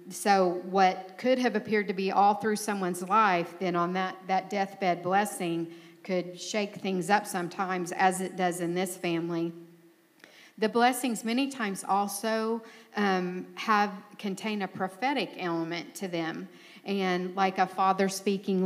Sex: female